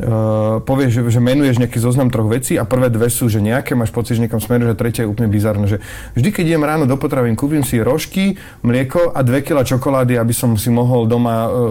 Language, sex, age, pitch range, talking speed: Slovak, male, 30-49, 110-120 Hz, 220 wpm